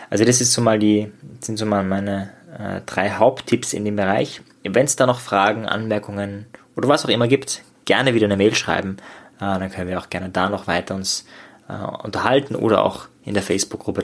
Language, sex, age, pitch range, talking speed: German, male, 20-39, 100-130 Hz, 210 wpm